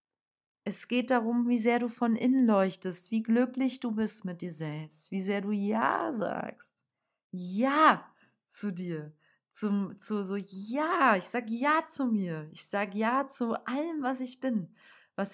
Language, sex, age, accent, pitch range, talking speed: German, female, 30-49, German, 180-235 Hz, 165 wpm